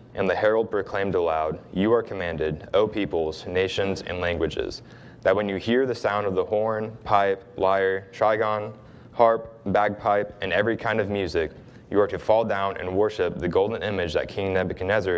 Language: English